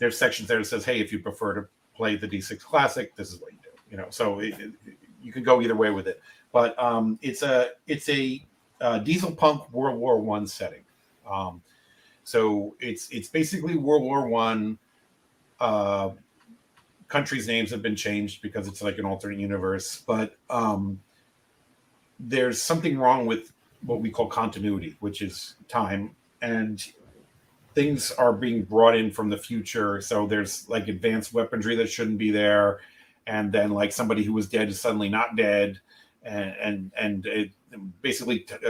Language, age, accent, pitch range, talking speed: English, 40-59, American, 105-125 Hz, 170 wpm